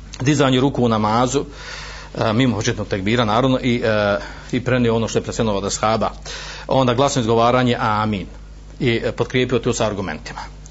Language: Croatian